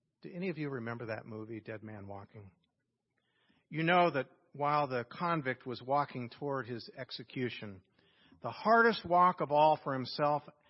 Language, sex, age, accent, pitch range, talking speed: English, male, 50-69, American, 115-150 Hz, 155 wpm